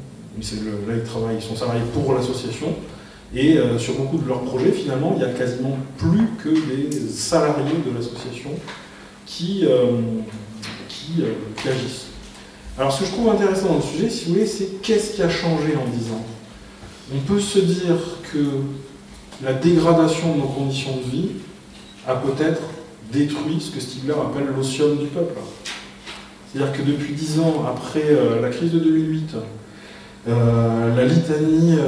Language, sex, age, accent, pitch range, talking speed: French, male, 30-49, French, 125-155 Hz, 170 wpm